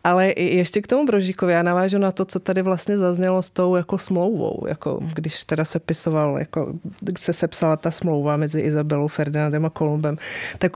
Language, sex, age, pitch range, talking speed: Czech, female, 30-49, 160-185 Hz, 185 wpm